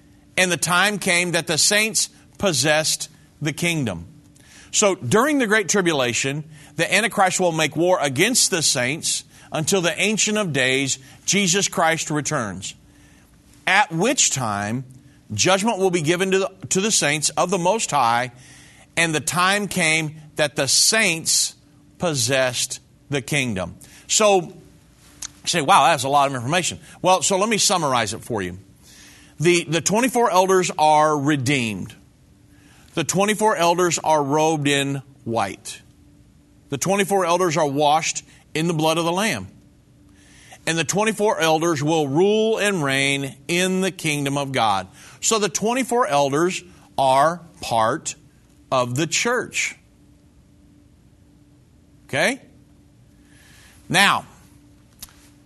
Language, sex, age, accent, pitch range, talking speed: English, male, 50-69, American, 140-190 Hz, 130 wpm